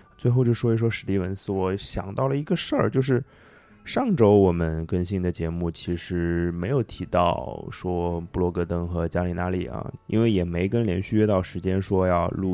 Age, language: 20-39, Chinese